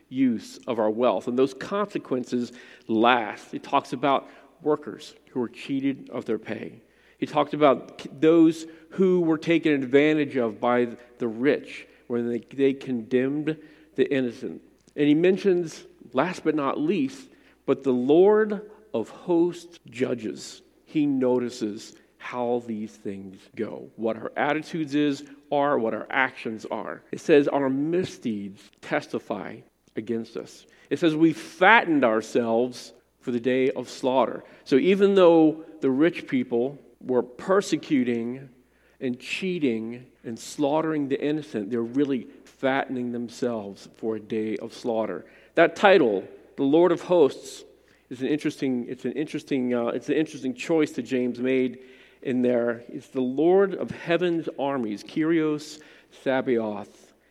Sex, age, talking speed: male, 50-69, 140 wpm